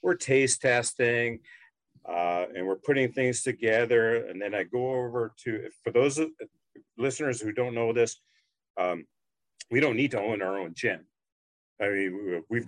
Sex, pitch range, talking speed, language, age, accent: male, 115-175 Hz, 160 wpm, English, 50-69, American